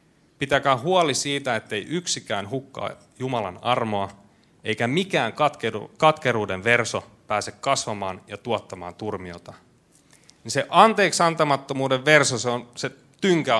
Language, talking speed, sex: Finnish, 115 wpm, male